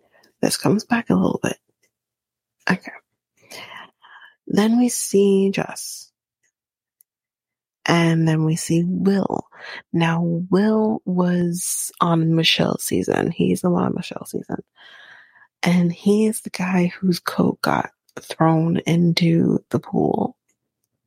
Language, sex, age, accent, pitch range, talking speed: English, female, 30-49, American, 170-220 Hz, 110 wpm